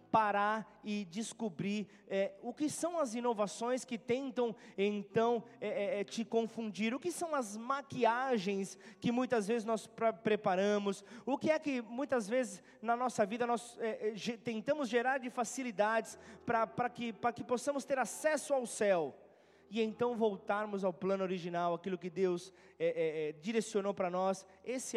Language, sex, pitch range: Portuguese, male, 190-240 Hz